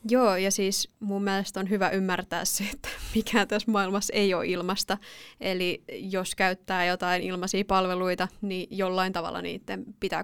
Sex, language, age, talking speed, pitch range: female, Finnish, 20-39, 160 wpm, 185-205 Hz